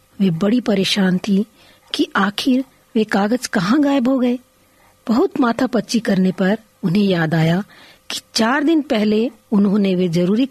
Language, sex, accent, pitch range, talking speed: Hindi, female, native, 185-230 Hz, 155 wpm